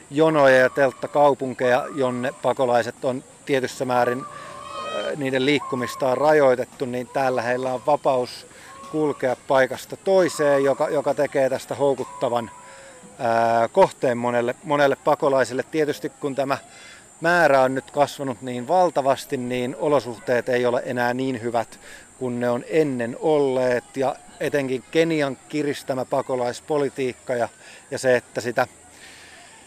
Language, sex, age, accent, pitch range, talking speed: Finnish, male, 30-49, native, 125-145 Hz, 120 wpm